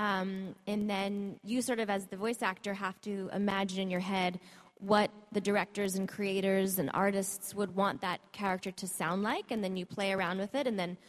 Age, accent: 20-39, American